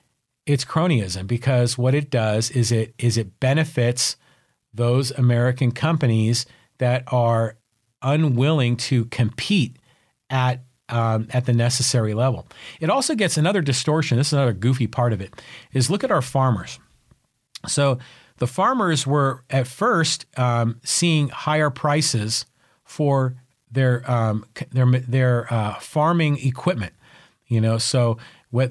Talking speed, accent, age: 135 wpm, American, 40-59